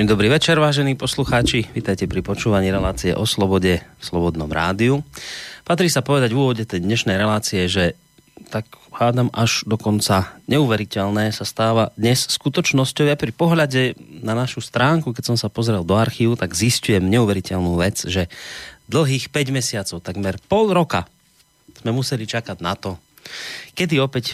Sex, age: male, 30-49